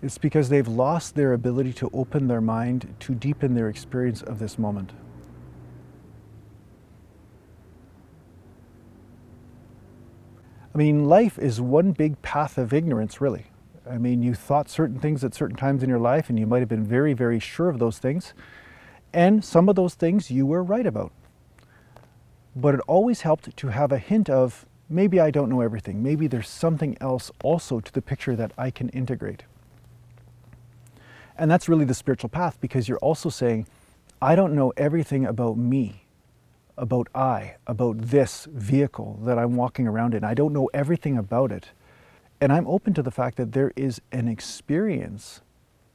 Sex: male